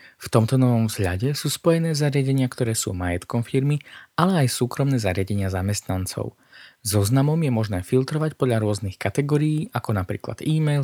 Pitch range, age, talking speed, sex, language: 100-140 Hz, 20-39, 150 wpm, male, Slovak